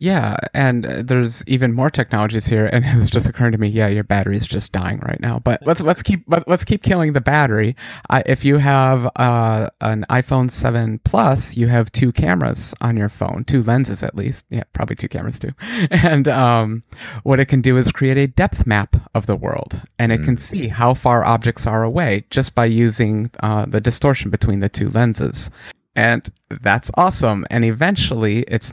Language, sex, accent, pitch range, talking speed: English, male, American, 110-135 Hz, 195 wpm